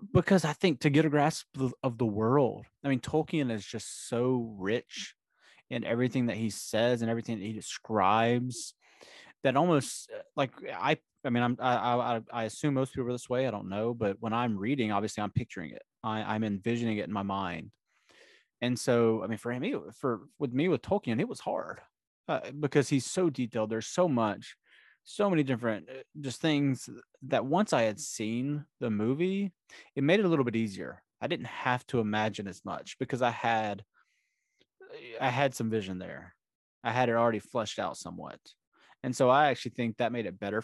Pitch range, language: 110-140 Hz, English